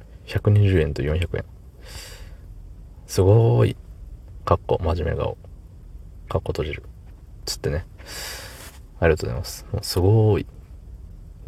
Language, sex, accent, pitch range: Japanese, male, native, 80-100 Hz